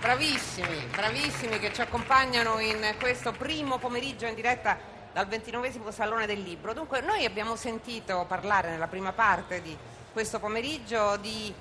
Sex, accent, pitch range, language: female, native, 185-265 Hz, Italian